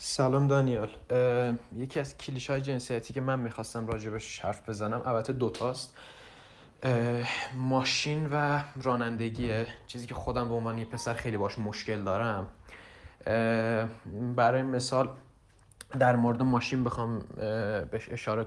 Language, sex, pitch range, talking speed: Persian, male, 115-135 Hz, 120 wpm